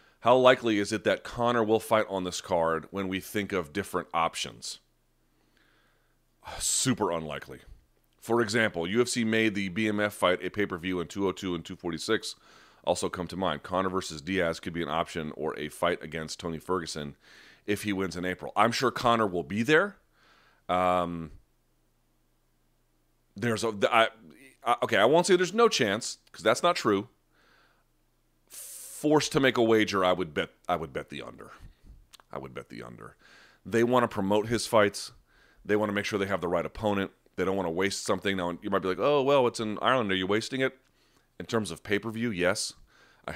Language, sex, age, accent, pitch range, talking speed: English, male, 30-49, American, 85-110 Hz, 190 wpm